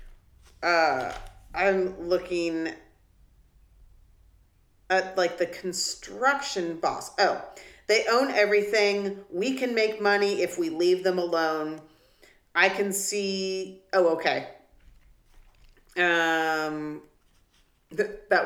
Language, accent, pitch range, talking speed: English, American, 155-185 Hz, 90 wpm